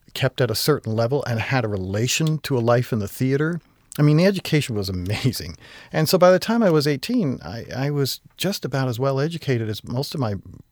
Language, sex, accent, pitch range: English, male, American, 115-150 Hz